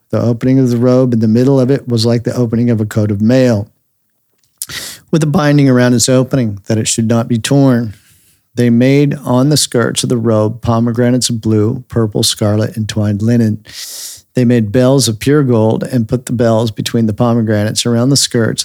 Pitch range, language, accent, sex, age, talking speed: 110-125 Hz, English, American, male, 50-69, 205 wpm